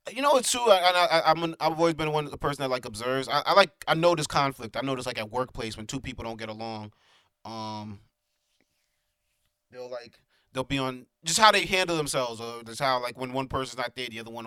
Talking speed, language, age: 245 wpm, English, 30-49